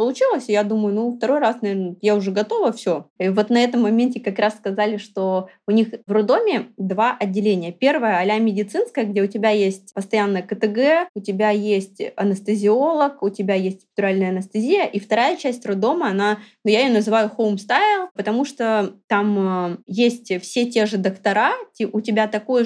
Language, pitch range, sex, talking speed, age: Russian, 195-230 Hz, female, 175 wpm, 20-39